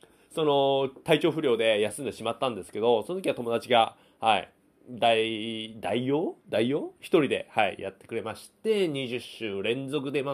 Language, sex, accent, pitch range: Japanese, male, native, 125-175 Hz